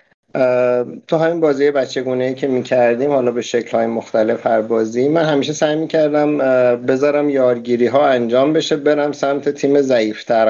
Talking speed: 160 wpm